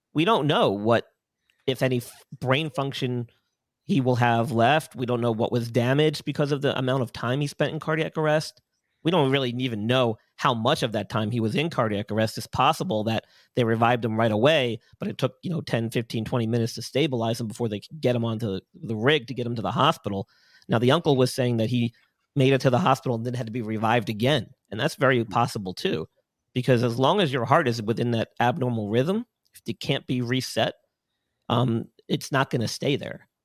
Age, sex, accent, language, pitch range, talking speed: 40-59, male, American, English, 115-135 Hz, 220 wpm